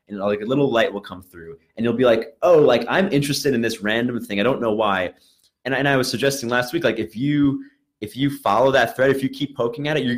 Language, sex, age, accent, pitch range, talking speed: English, male, 20-39, American, 95-130 Hz, 270 wpm